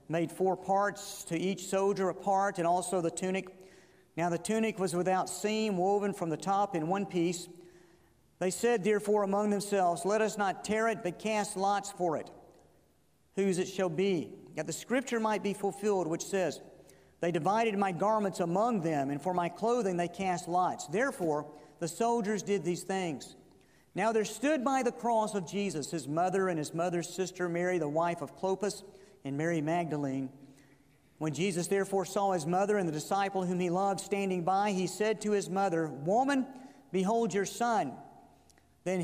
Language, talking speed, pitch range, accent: English, 180 wpm, 165-200 Hz, American